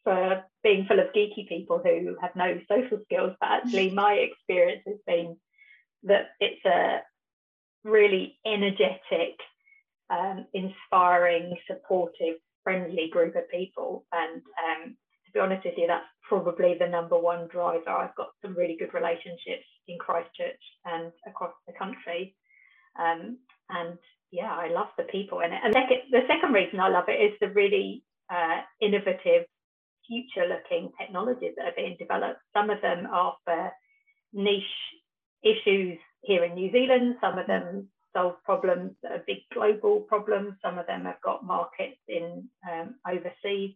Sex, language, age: female, English, 30-49